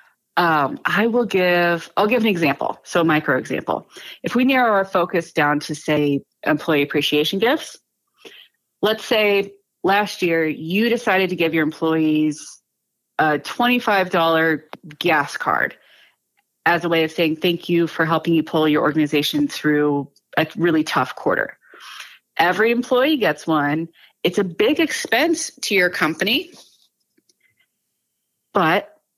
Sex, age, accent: female, 30-49, American